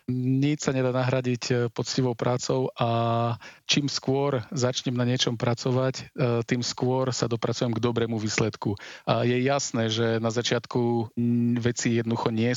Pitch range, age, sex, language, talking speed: 110-130 Hz, 40-59, male, Slovak, 135 wpm